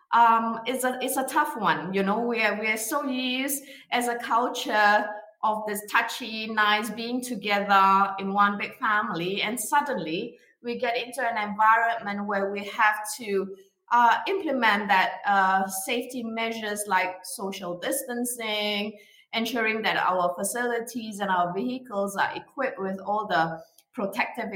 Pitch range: 205-265 Hz